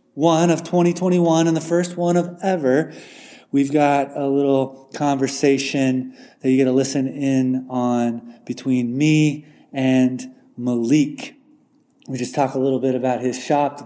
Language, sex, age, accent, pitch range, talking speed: English, male, 30-49, American, 130-165 Hz, 150 wpm